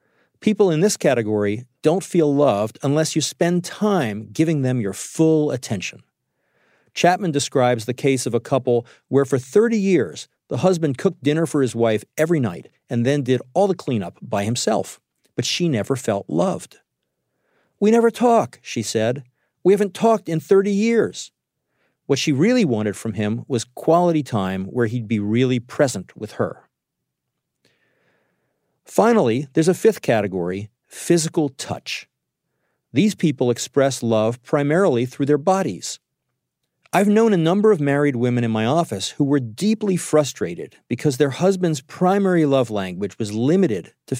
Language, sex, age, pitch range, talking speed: English, male, 50-69, 120-170 Hz, 155 wpm